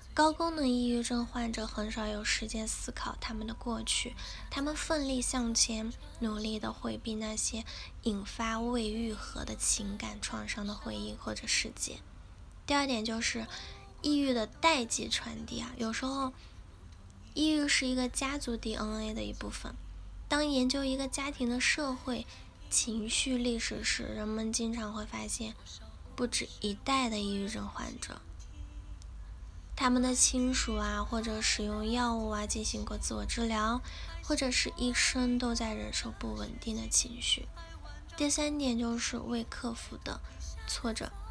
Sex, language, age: female, Chinese, 10-29